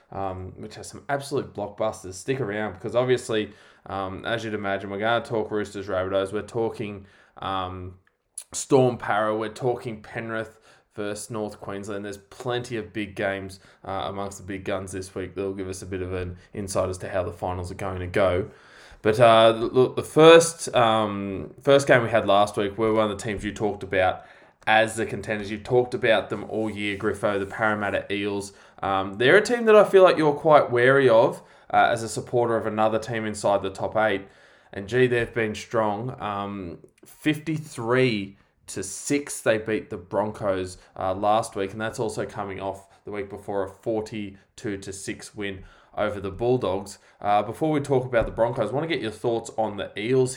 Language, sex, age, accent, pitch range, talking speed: English, male, 20-39, Australian, 100-120 Hz, 195 wpm